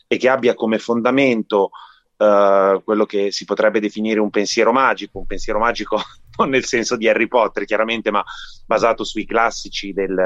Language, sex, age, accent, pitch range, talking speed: Italian, male, 30-49, native, 100-120 Hz, 170 wpm